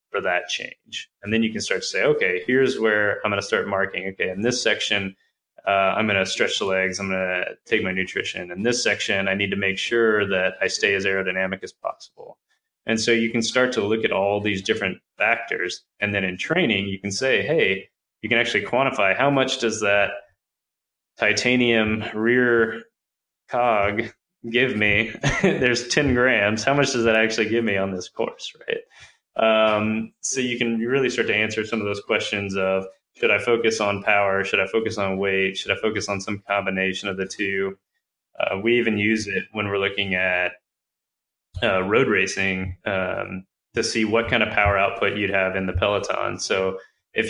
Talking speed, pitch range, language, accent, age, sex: 200 wpm, 95-115 Hz, English, American, 20-39, male